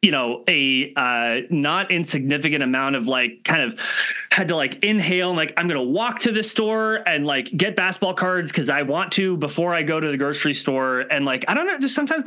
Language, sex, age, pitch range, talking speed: English, male, 30-49, 145-220 Hz, 230 wpm